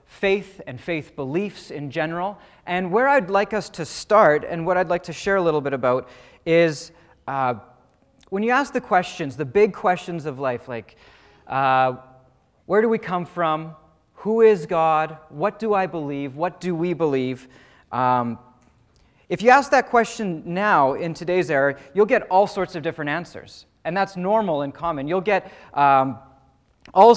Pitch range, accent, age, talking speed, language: 150-195 Hz, American, 30-49, 175 wpm, English